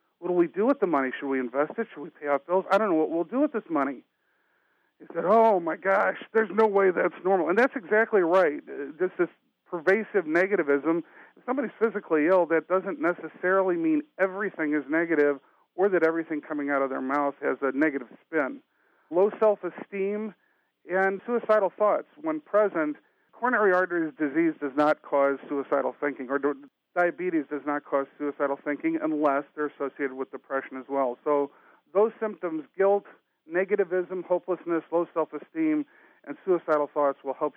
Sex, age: male, 50-69